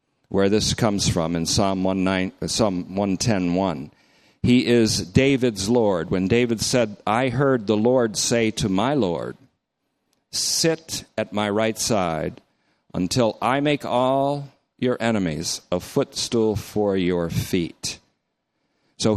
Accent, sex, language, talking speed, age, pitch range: American, male, English, 130 wpm, 50-69, 100-130 Hz